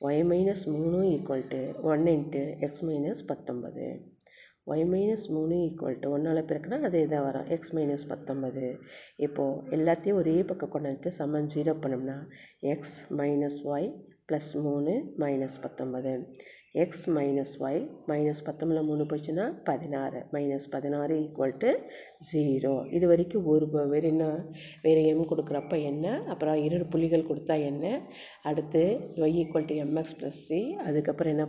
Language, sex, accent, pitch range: Tamil, female, native, 145-165 Hz